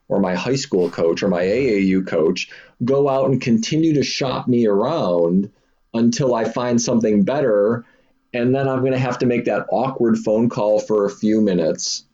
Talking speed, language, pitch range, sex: 185 wpm, English, 105-135 Hz, male